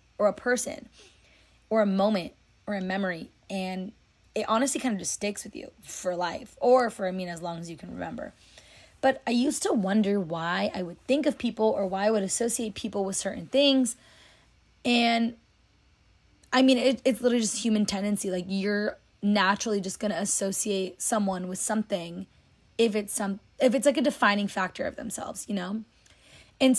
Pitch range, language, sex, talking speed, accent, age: 190-235 Hz, English, female, 180 wpm, American, 20-39